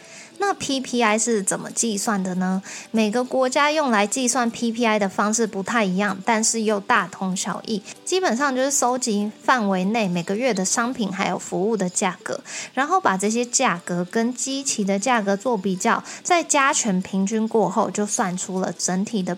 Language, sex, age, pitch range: Chinese, female, 20-39, 190-240 Hz